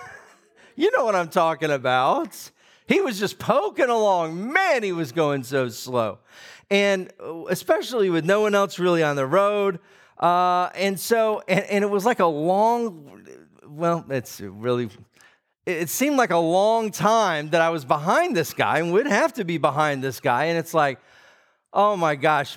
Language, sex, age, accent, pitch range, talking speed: English, male, 40-59, American, 155-220 Hz, 180 wpm